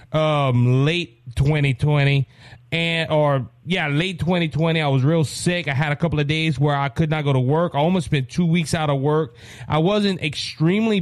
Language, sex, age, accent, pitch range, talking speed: English, male, 30-49, American, 135-185 Hz, 195 wpm